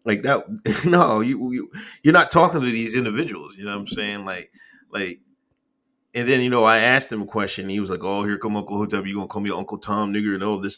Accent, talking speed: American, 260 wpm